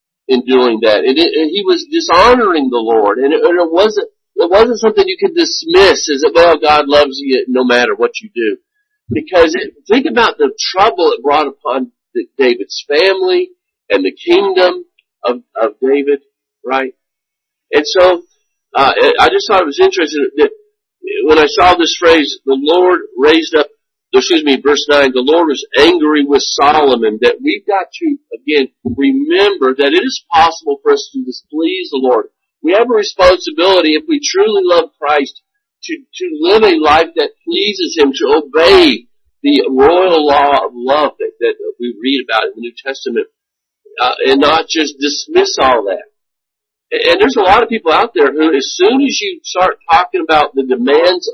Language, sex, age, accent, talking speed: English, male, 50-69, American, 180 wpm